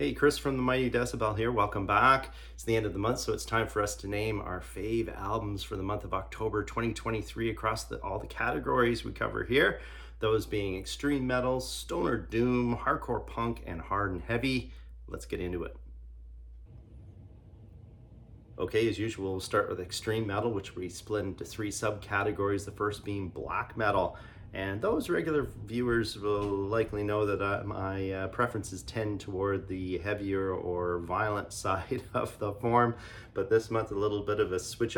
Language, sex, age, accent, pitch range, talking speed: English, male, 30-49, American, 95-115 Hz, 180 wpm